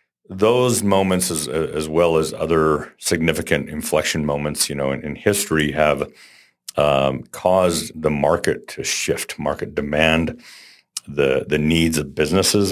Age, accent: 50-69, American